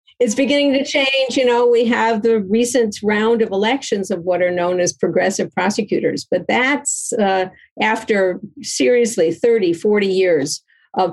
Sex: female